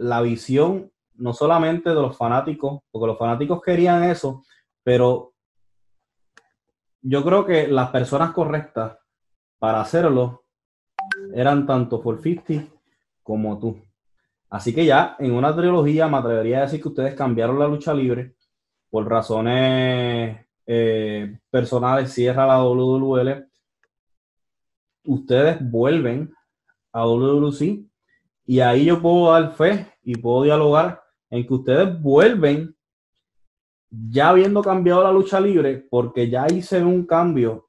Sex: male